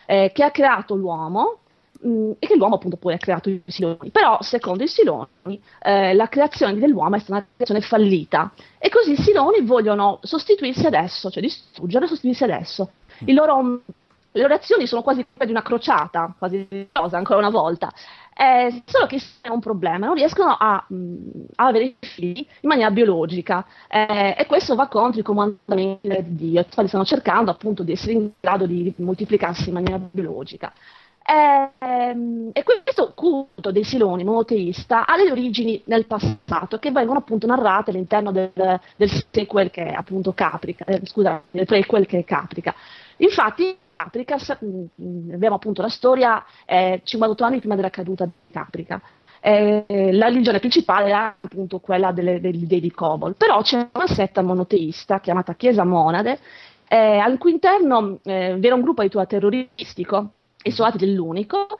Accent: native